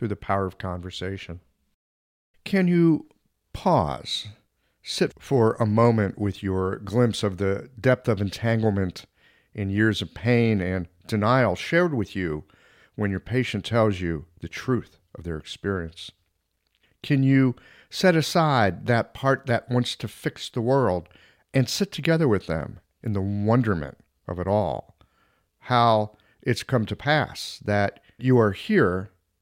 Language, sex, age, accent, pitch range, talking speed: English, male, 50-69, American, 95-125 Hz, 145 wpm